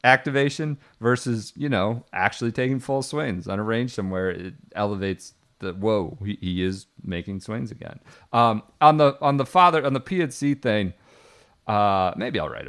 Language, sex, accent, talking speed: English, male, American, 170 wpm